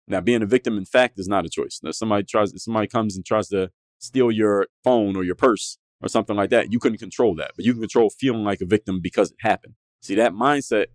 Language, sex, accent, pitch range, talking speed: English, male, American, 100-120 Hz, 245 wpm